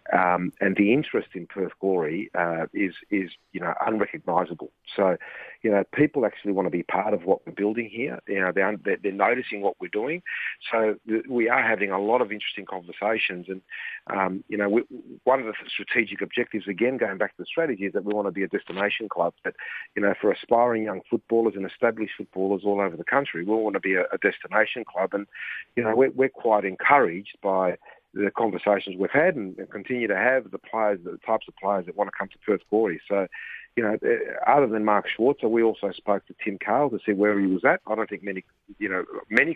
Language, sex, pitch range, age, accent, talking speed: English, male, 95-115 Hz, 40-59, Australian, 220 wpm